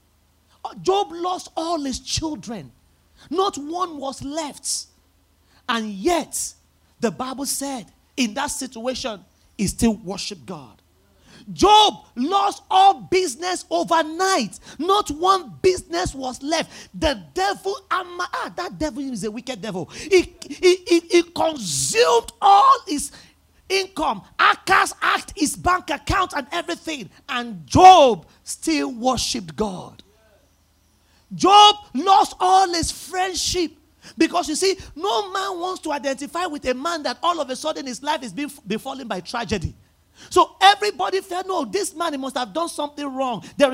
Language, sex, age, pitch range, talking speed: English, male, 40-59, 255-360 Hz, 140 wpm